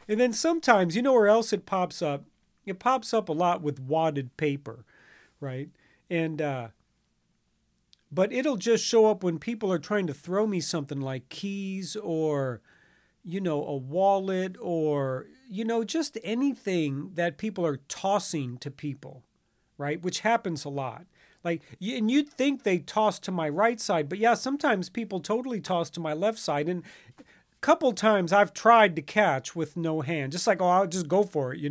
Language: English